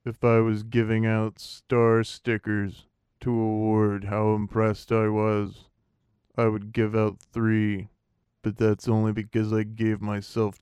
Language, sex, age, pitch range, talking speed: English, male, 20-39, 105-110 Hz, 140 wpm